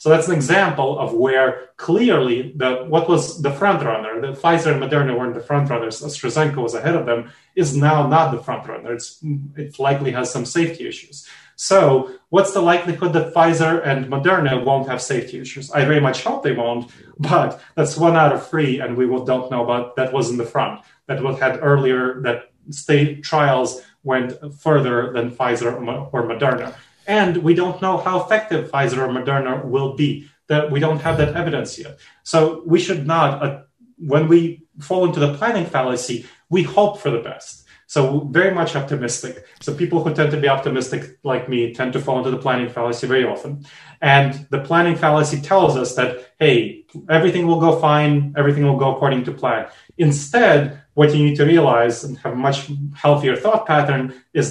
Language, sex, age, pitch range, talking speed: English, male, 30-49, 130-160 Hz, 195 wpm